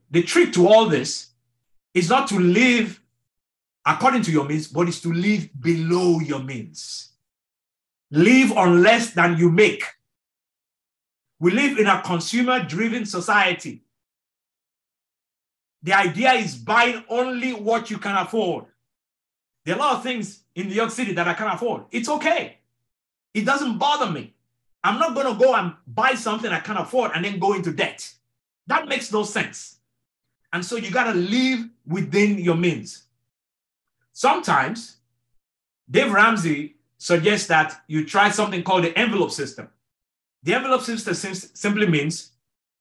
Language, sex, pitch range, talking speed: English, male, 160-225 Hz, 150 wpm